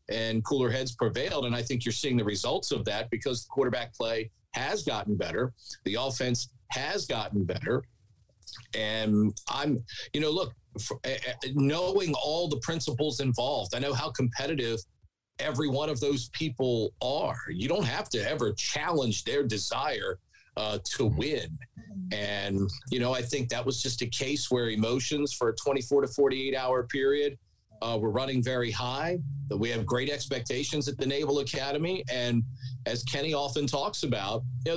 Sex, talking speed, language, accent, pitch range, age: male, 165 wpm, English, American, 115-145 Hz, 40-59